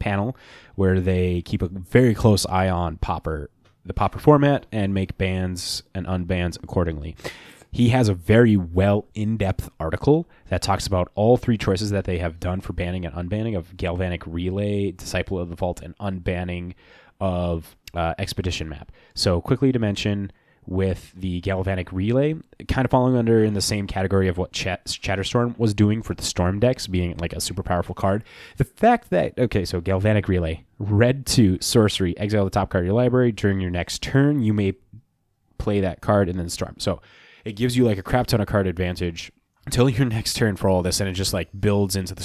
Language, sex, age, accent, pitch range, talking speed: English, male, 20-39, American, 90-110 Hz, 195 wpm